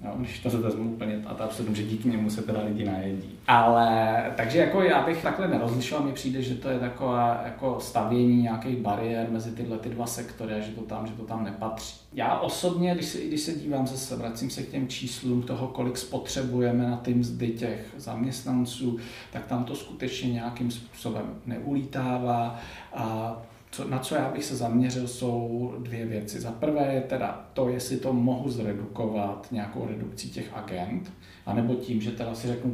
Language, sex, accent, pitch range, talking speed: Czech, male, native, 110-125 Hz, 185 wpm